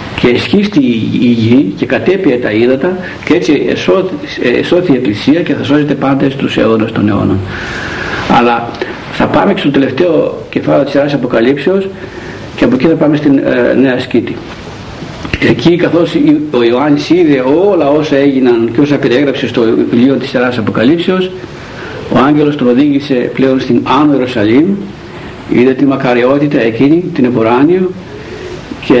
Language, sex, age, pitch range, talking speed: Greek, male, 60-79, 125-165 Hz, 145 wpm